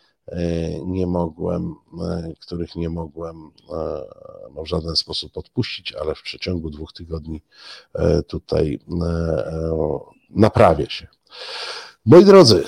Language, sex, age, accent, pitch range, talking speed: Polish, male, 50-69, native, 85-110 Hz, 90 wpm